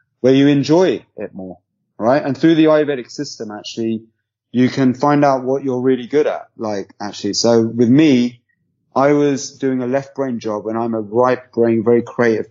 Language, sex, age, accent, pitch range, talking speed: English, male, 30-49, British, 110-135 Hz, 190 wpm